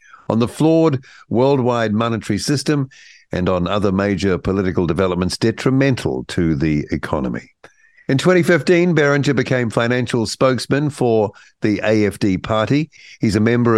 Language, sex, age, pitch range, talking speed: English, male, 60-79, 105-140 Hz, 125 wpm